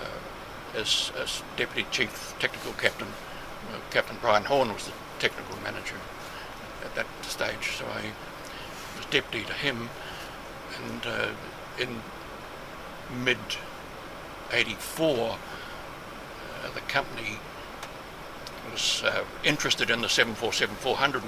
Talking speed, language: 95 wpm, English